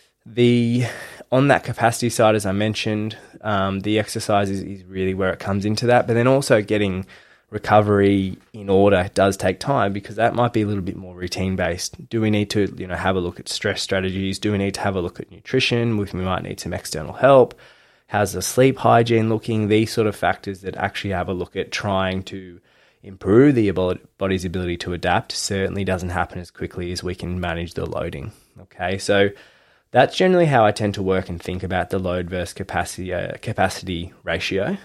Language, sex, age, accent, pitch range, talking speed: English, male, 20-39, Australian, 95-110 Hz, 200 wpm